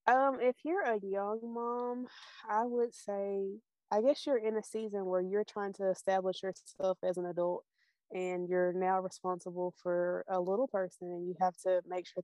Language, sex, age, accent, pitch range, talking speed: English, female, 20-39, American, 185-205 Hz, 185 wpm